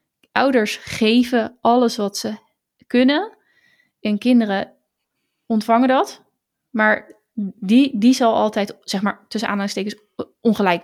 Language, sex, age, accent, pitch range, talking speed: Dutch, female, 20-39, Dutch, 205-235 Hz, 110 wpm